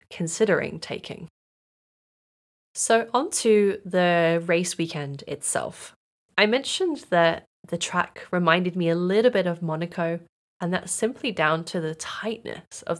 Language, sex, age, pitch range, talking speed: English, female, 20-39, 165-205 Hz, 135 wpm